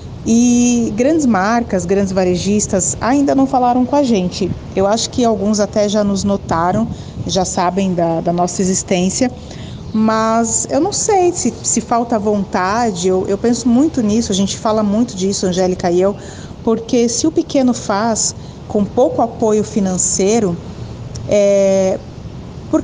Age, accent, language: 30-49, Brazilian, Portuguese